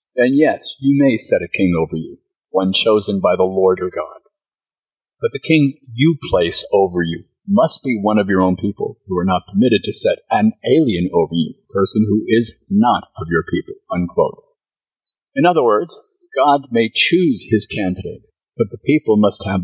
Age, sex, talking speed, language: 50-69, male, 185 wpm, English